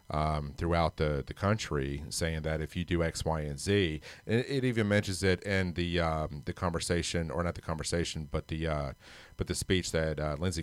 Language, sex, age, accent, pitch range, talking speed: English, male, 40-59, American, 85-100 Hz, 210 wpm